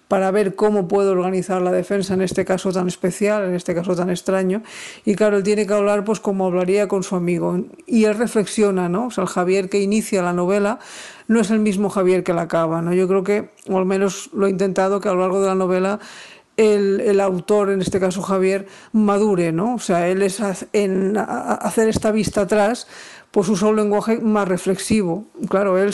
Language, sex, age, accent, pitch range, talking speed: Spanish, female, 50-69, Spanish, 180-205 Hz, 215 wpm